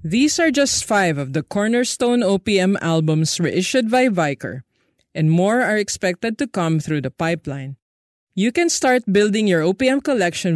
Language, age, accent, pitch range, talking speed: English, 50-69, Filipino, 155-220 Hz, 160 wpm